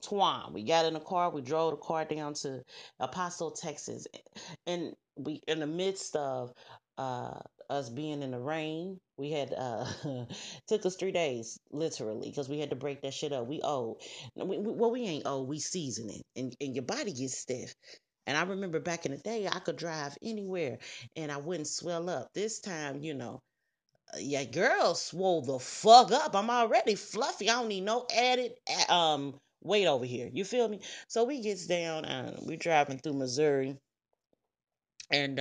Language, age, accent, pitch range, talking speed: English, 30-49, American, 130-170 Hz, 190 wpm